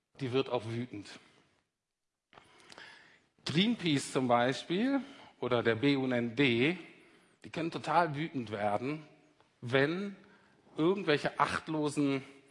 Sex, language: male, German